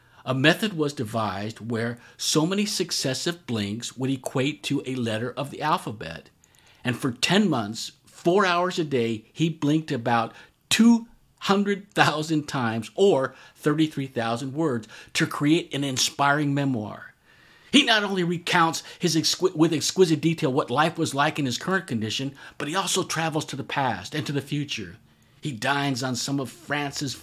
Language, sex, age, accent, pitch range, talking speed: English, male, 50-69, American, 120-160 Hz, 155 wpm